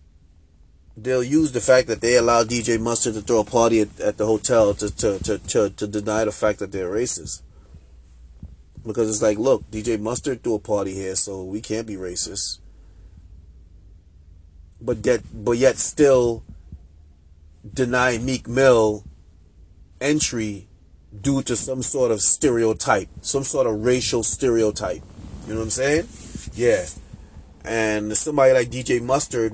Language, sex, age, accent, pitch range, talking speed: English, male, 30-49, American, 80-120 Hz, 150 wpm